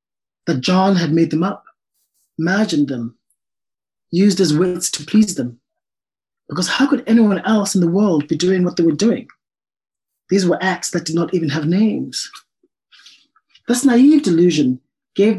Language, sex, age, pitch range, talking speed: English, male, 30-49, 150-195 Hz, 160 wpm